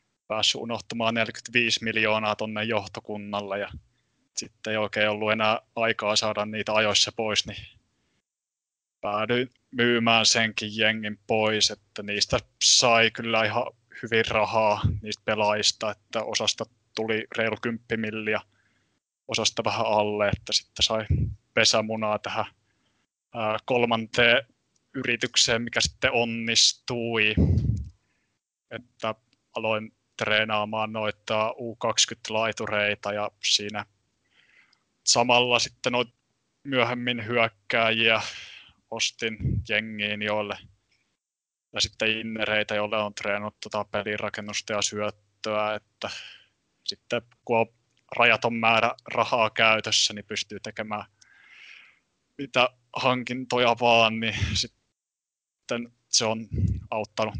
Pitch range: 105-115 Hz